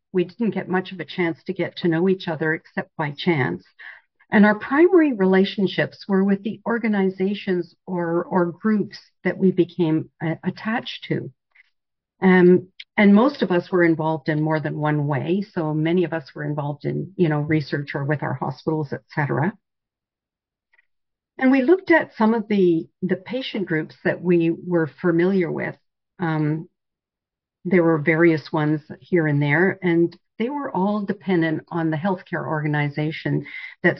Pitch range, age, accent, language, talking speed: 160-200 Hz, 50-69, American, English, 165 wpm